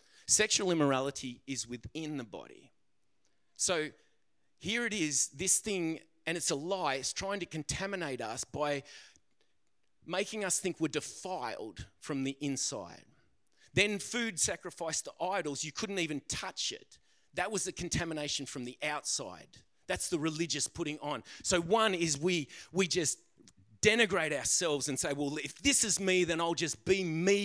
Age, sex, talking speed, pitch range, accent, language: 30-49, male, 155 wpm, 145-190 Hz, Australian, English